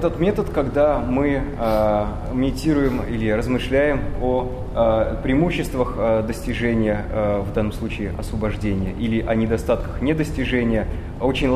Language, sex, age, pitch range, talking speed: English, male, 20-39, 100-130 Hz, 120 wpm